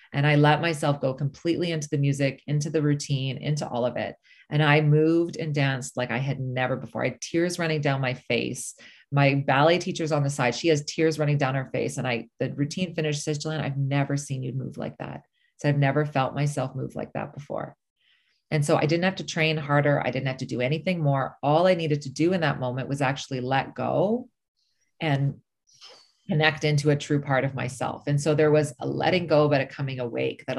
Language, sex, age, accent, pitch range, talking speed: English, female, 30-49, American, 135-155 Hz, 225 wpm